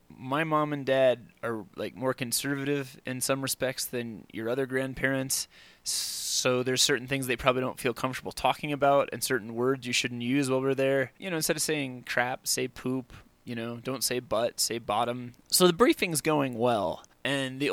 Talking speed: 195 wpm